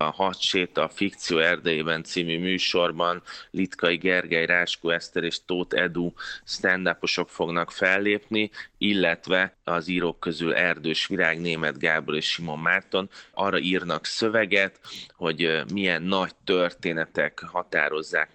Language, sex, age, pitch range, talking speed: Hungarian, male, 30-49, 80-95 Hz, 120 wpm